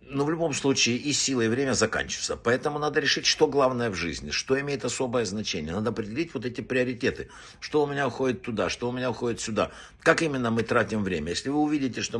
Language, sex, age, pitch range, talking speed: Russian, male, 60-79, 105-130 Hz, 215 wpm